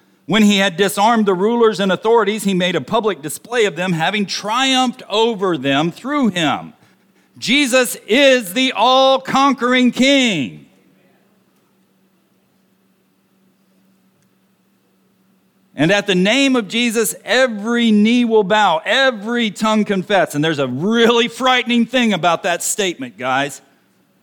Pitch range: 175-230 Hz